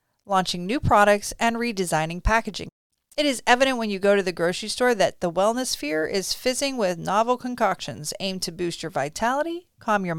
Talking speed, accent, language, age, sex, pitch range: 190 wpm, American, English, 40-59, female, 180-235 Hz